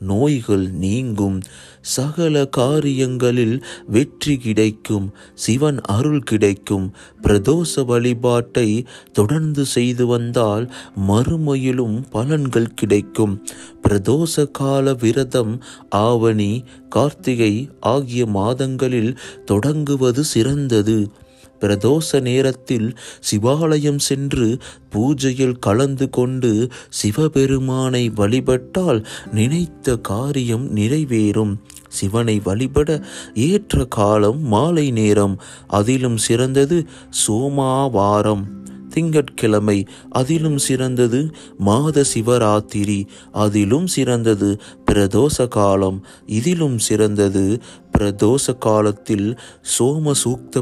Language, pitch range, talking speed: Tamil, 105-135 Hz, 70 wpm